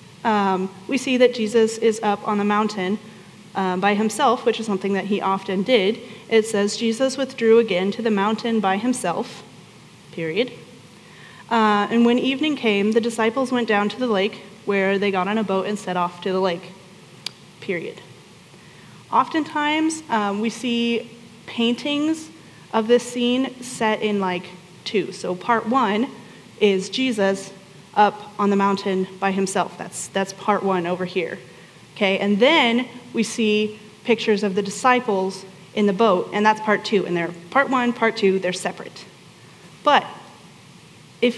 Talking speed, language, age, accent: 160 wpm, English, 30-49, American